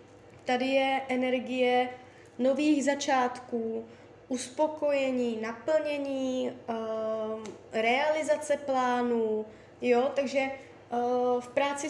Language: Czech